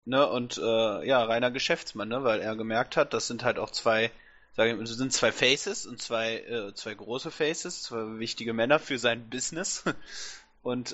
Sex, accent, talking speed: male, German, 185 wpm